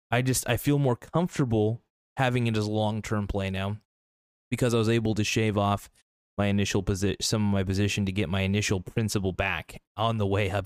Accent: American